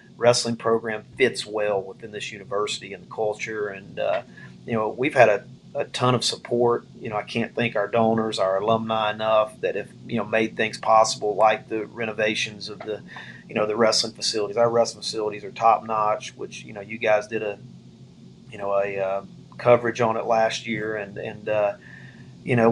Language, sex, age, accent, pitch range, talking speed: English, male, 40-59, American, 110-120 Hz, 200 wpm